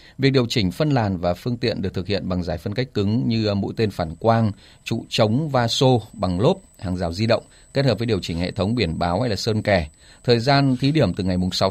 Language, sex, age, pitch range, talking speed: Vietnamese, male, 20-39, 95-125 Hz, 255 wpm